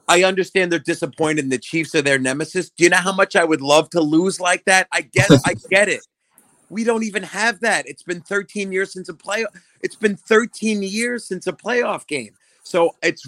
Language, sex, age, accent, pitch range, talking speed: English, male, 30-49, American, 135-175 Hz, 220 wpm